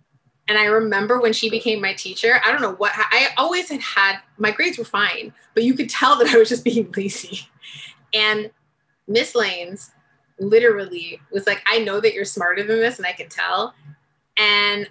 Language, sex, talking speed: English, female, 195 wpm